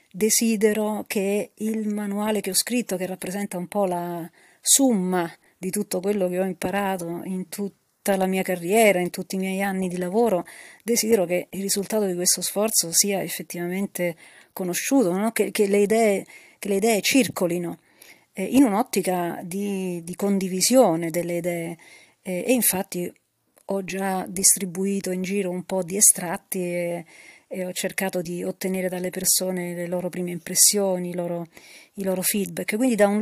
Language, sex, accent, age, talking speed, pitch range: Italian, female, native, 40-59, 165 wpm, 180-210 Hz